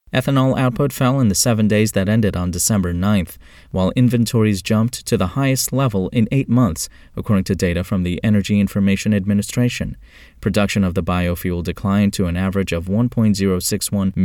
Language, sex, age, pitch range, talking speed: English, male, 30-49, 90-120 Hz, 170 wpm